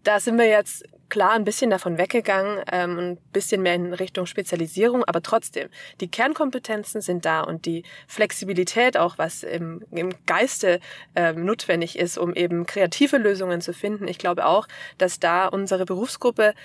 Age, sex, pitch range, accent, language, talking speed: 20-39, female, 180-215 Hz, German, German, 155 wpm